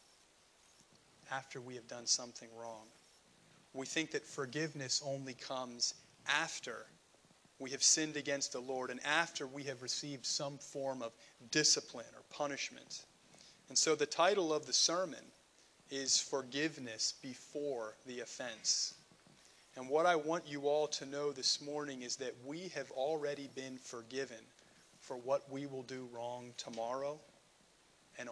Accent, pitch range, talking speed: American, 125-155 Hz, 140 wpm